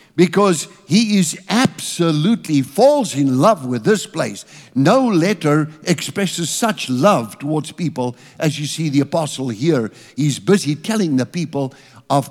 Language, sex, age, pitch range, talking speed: English, male, 60-79, 140-190 Hz, 140 wpm